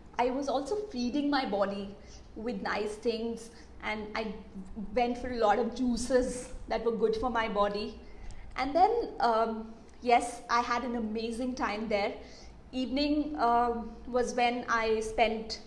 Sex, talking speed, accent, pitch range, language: female, 150 wpm, Indian, 225-295 Hz, English